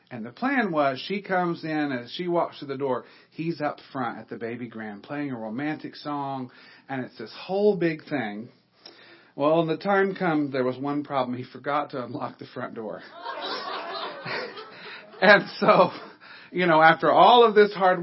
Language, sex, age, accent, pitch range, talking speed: English, male, 40-59, American, 140-190 Hz, 185 wpm